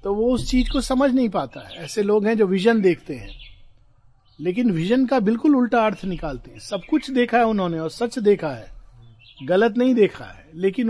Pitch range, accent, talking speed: 160-220 Hz, native, 210 wpm